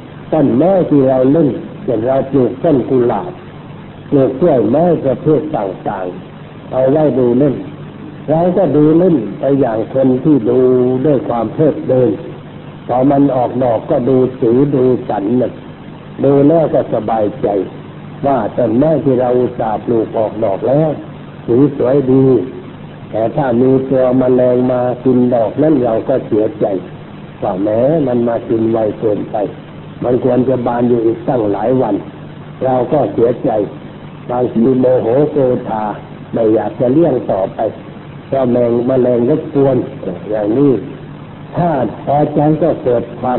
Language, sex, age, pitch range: Thai, male, 60-79, 125-150 Hz